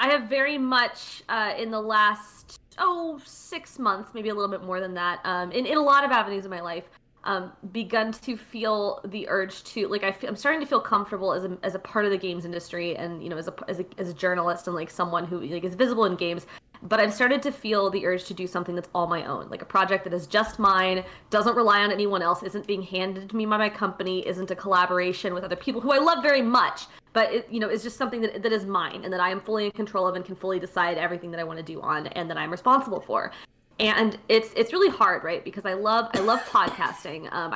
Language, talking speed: English, 260 wpm